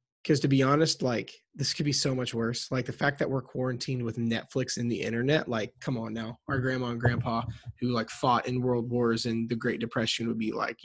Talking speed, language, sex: 240 wpm, English, male